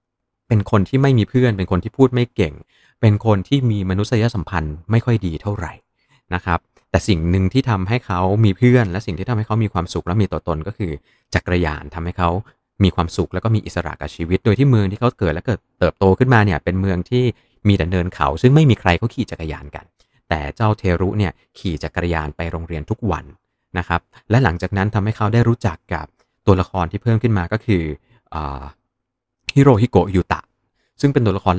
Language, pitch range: Thai, 85-110 Hz